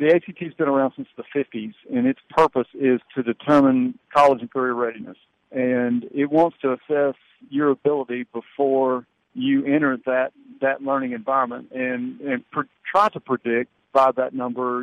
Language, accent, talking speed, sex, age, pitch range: English, American, 160 wpm, male, 50-69, 125-155 Hz